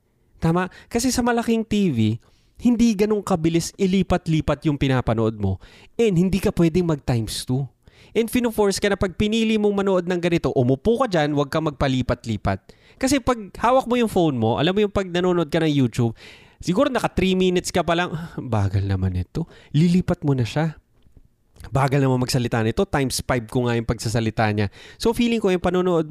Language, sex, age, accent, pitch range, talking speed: Filipino, male, 20-39, native, 125-185 Hz, 180 wpm